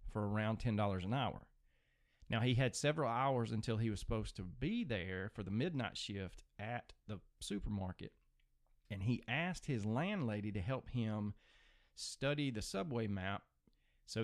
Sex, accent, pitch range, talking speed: male, American, 95-120 Hz, 155 wpm